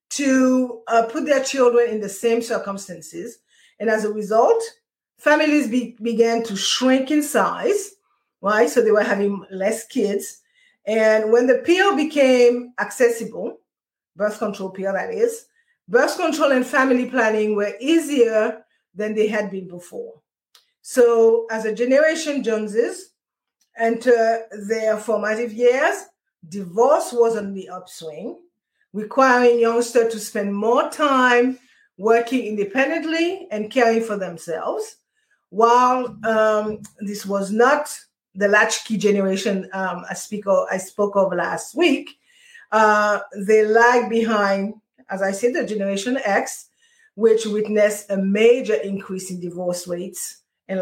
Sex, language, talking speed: female, English, 130 wpm